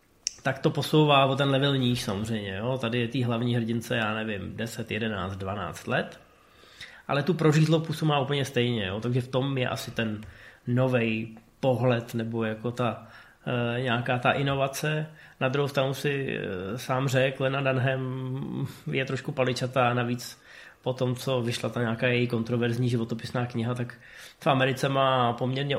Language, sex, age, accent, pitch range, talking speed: Czech, male, 20-39, native, 120-140 Hz, 165 wpm